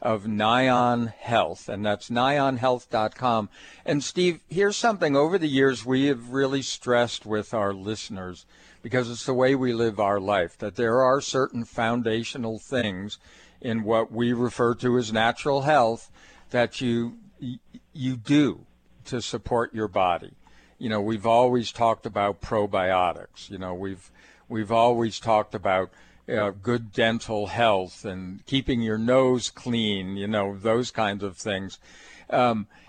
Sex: male